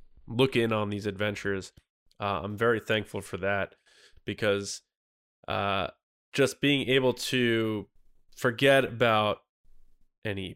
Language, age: English, 20-39